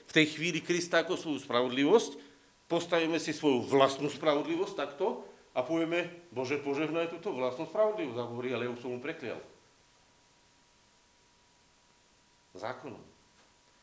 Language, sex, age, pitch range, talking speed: Slovak, male, 50-69, 130-170 Hz, 115 wpm